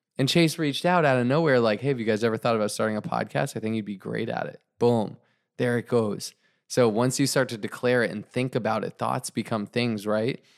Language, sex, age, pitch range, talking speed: English, male, 20-39, 110-125 Hz, 250 wpm